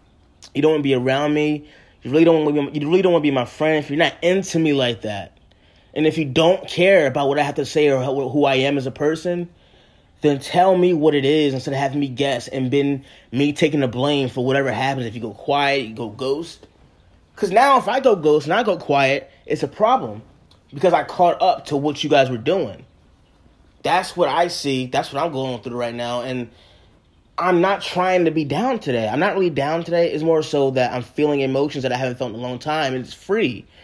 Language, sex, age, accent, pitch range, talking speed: English, male, 20-39, American, 125-150 Hz, 245 wpm